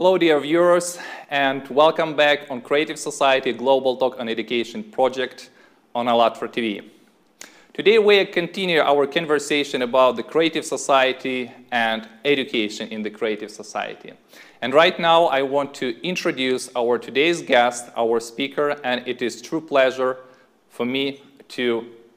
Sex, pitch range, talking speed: male, 130-165 Hz, 140 wpm